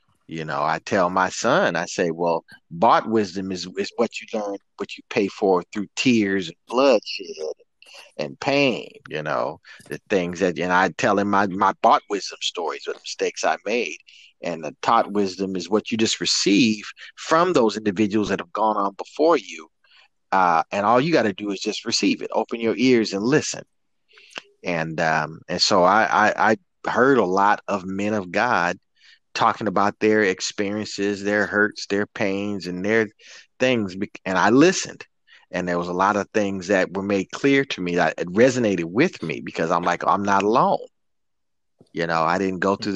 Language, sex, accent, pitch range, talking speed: English, male, American, 95-110 Hz, 190 wpm